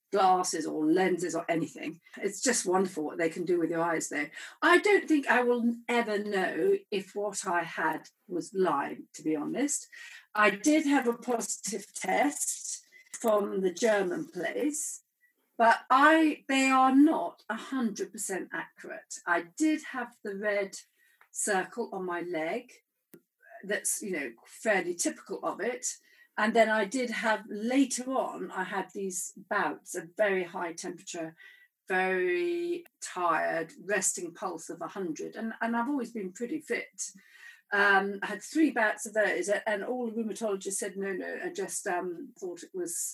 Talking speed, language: 160 wpm, English